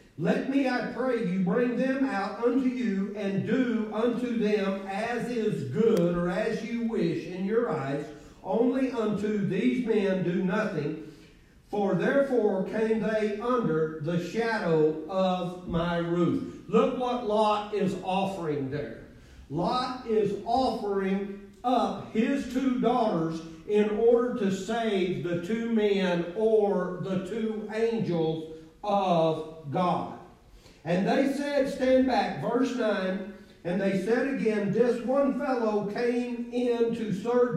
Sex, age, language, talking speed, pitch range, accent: male, 40-59, English, 135 wpm, 185-235 Hz, American